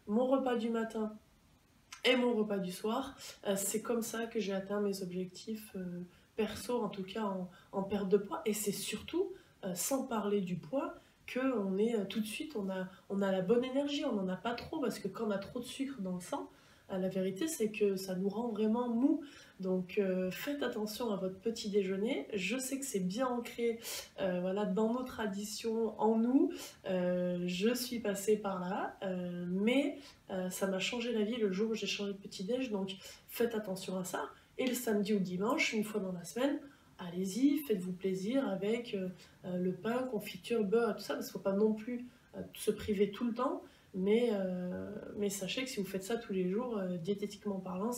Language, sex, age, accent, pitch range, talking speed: French, female, 20-39, French, 190-230 Hz, 210 wpm